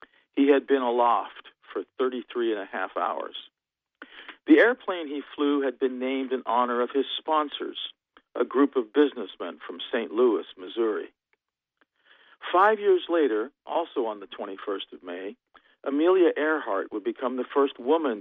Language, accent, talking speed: English, American, 150 wpm